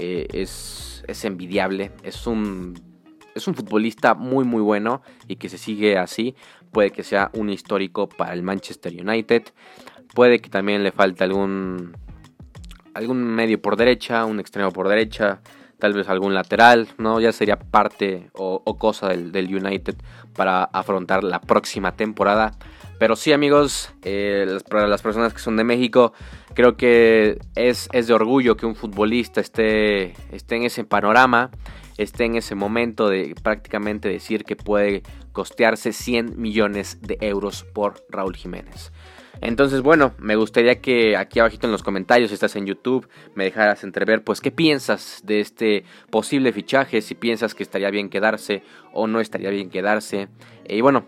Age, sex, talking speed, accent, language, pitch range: 20-39, male, 160 wpm, Mexican, Spanish, 100-115 Hz